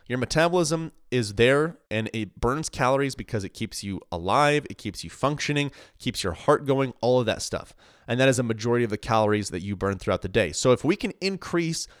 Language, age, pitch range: English, 30-49, 100-125 Hz